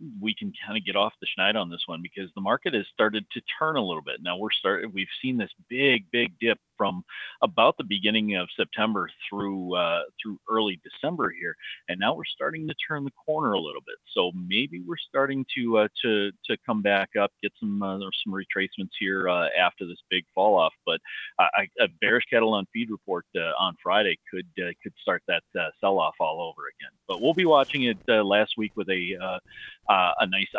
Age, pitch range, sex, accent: 40-59, 100-140 Hz, male, American